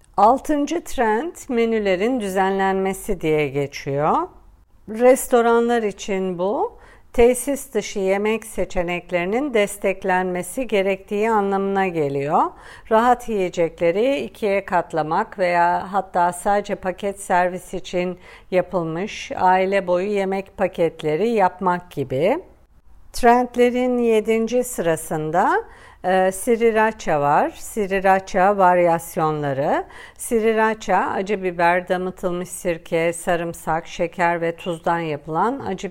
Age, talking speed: 50-69, 85 wpm